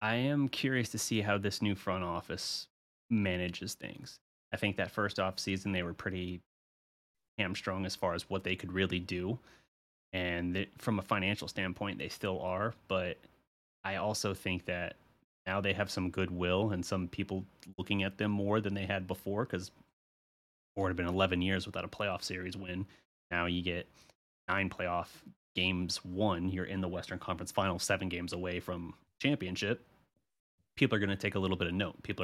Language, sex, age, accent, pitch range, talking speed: English, male, 30-49, American, 90-100 Hz, 185 wpm